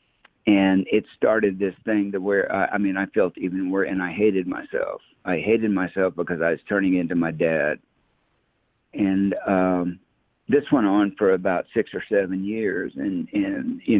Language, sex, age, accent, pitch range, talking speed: English, male, 60-79, American, 95-115 Hz, 180 wpm